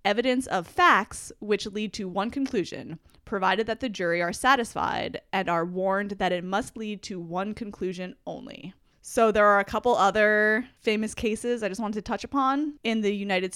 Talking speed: 185 wpm